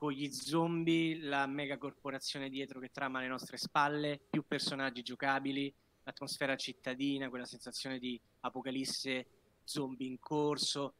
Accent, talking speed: native, 130 wpm